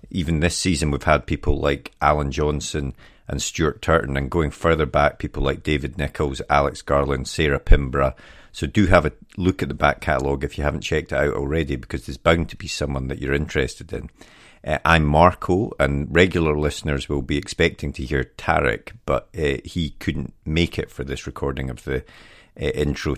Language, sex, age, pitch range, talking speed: English, male, 40-59, 70-80 Hz, 195 wpm